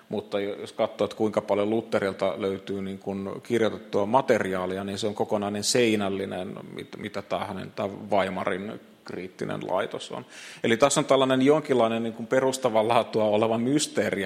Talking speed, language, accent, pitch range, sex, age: 140 wpm, Finnish, native, 100-120 Hz, male, 30-49